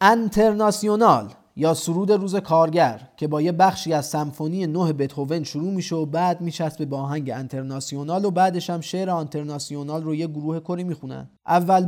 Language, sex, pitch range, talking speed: Persian, male, 140-180 Hz, 155 wpm